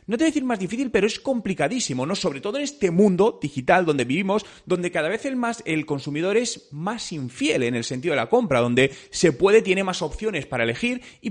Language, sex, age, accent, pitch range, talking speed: Spanish, male, 30-49, Spanish, 140-210 Hz, 230 wpm